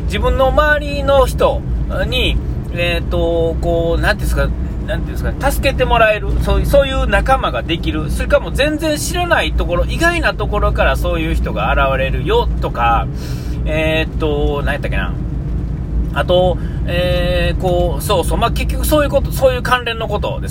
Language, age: Japanese, 40-59